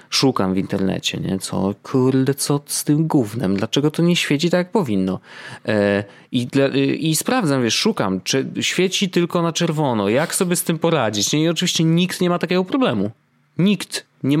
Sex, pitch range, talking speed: male, 110-150 Hz, 180 wpm